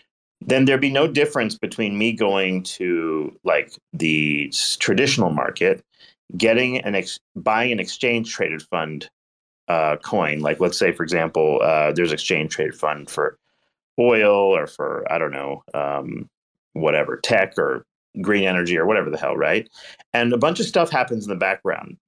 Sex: male